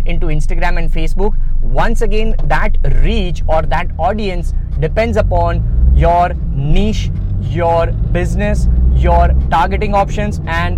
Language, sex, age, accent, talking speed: English, male, 20-39, Indian, 115 wpm